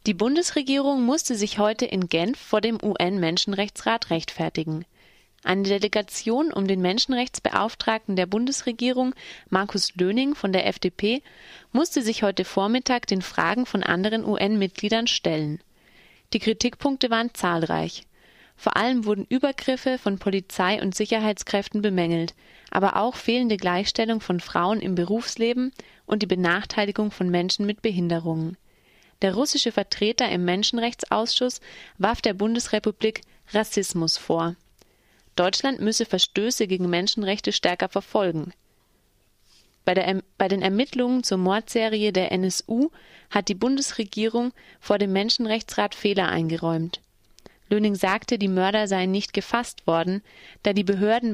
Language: German